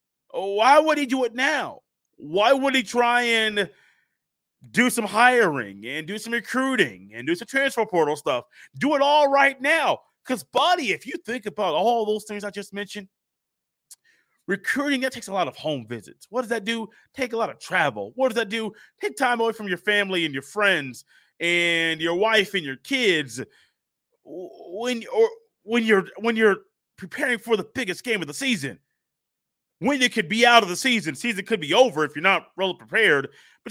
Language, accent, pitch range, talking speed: English, American, 180-255 Hz, 190 wpm